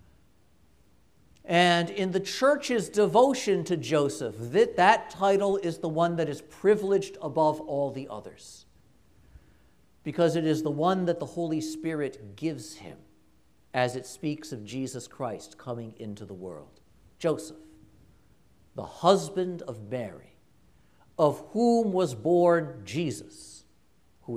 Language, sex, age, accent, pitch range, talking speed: English, male, 50-69, American, 120-195 Hz, 130 wpm